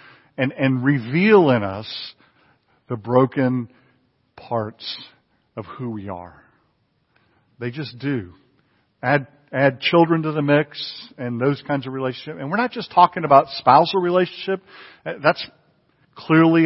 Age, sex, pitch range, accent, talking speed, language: 50-69, male, 110-150 Hz, American, 130 wpm, English